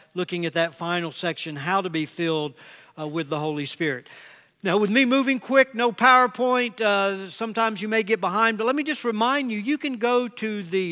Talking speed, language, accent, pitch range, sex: 210 wpm, English, American, 175-225 Hz, male